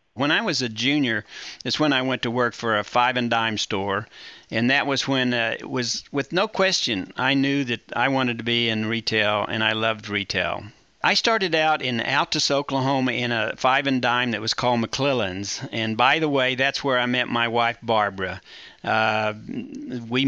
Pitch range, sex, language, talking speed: 115-130 Hz, male, English, 200 wpm